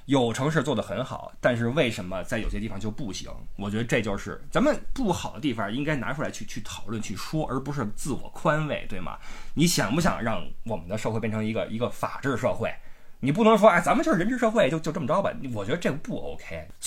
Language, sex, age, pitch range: Chinese, male, 20-39, 110-170 Hz